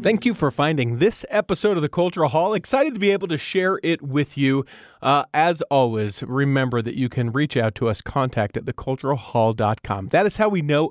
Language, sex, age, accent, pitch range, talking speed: English, male, 40-59, American, 125-175 Hz, 210 wpm